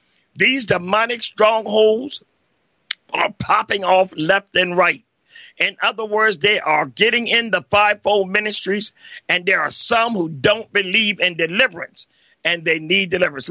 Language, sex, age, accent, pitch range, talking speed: English, male, 50-69, American, 175-225 Hz, 140 wpm